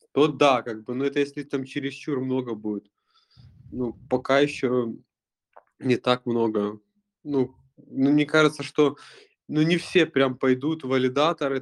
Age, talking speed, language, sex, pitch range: 20-39, 145 wpm, Russian, male, 115-140 Hz